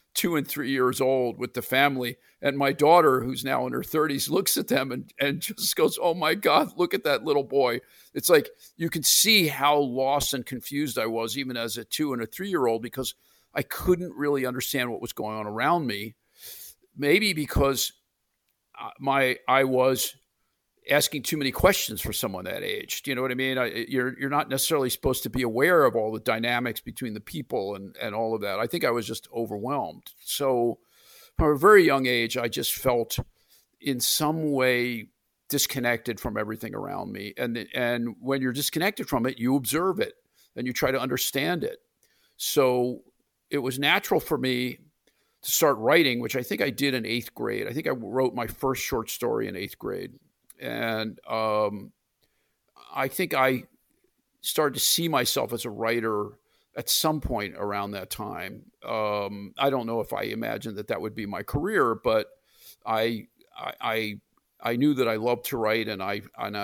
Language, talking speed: English, 190 wpm